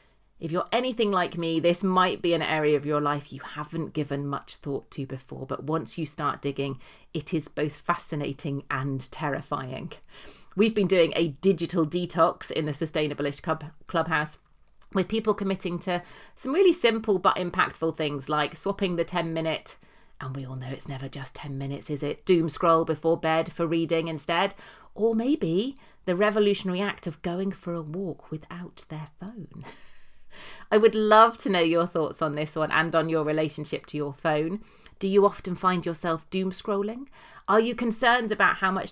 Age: 30-49